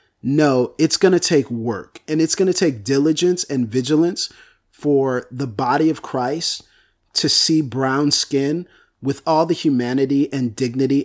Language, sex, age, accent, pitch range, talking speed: English, male, 30-49, American, 135-175 Hz, 160 wpm